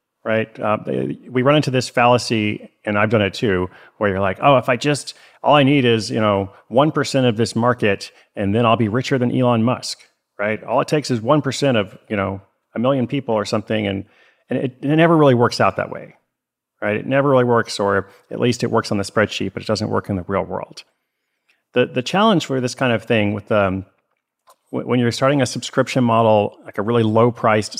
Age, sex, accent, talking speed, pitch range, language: 30-49, male, American, 220 wpm, 95-125 Hz, English